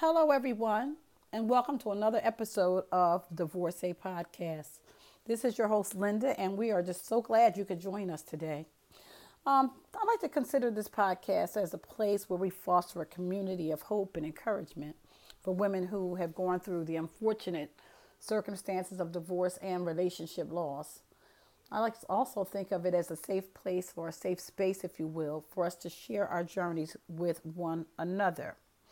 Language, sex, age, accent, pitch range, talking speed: English, female, 40-59, American, 165-210 Hz, 180 wpm